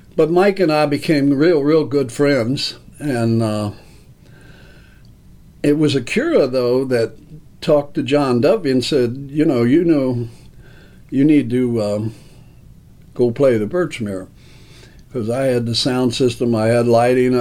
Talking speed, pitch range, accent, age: 150 wpm, 120-145 Hz, American, 60-79